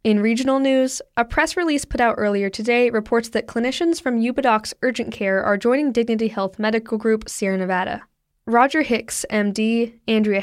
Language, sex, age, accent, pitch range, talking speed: English, female, 10-29, American, 205-245 Hz, 165 wpm